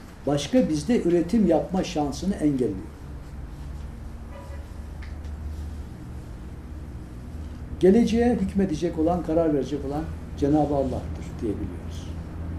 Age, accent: 60-79, native